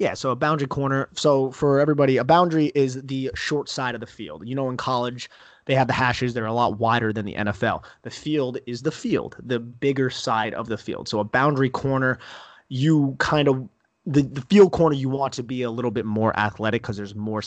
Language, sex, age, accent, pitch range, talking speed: English, male, 30-49, American, 110-135 Hz, 235 wpm